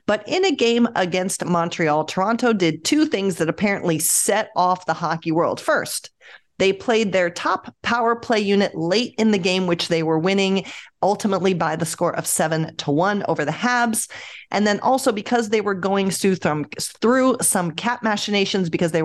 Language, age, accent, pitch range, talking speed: English, 40-59, American, 165-210 Hz, 175 wpm